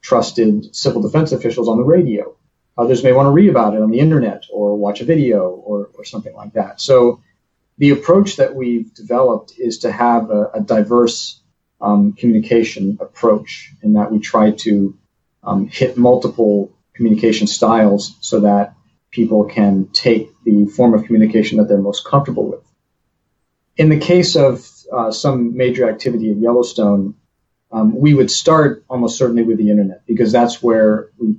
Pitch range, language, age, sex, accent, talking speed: 105-130 Hz, English, 40-59, male, American, 170 wpm